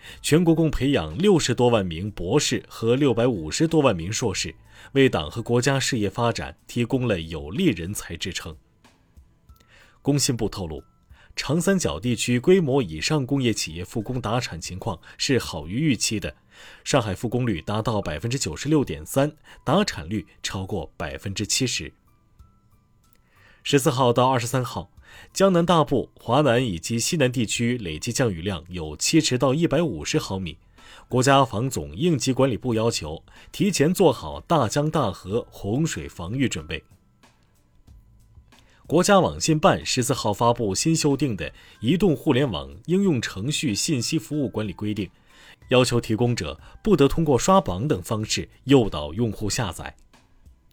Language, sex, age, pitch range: Chinese, male, 30-49, 95-140 Hz